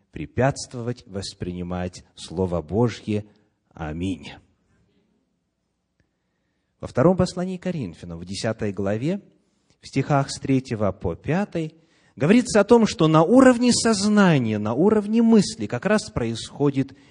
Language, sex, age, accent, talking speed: Russian, male, 30-49, native, 110 wpm